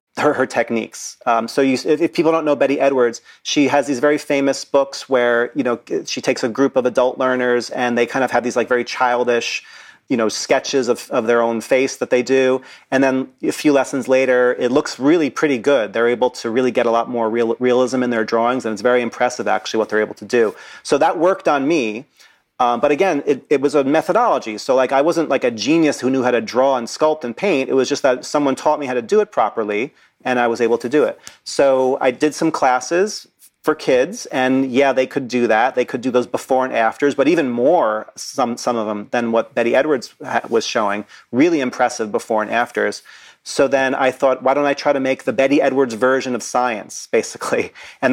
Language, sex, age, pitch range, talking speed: English, male, 30-49, 120-140 Hz, 230 wpm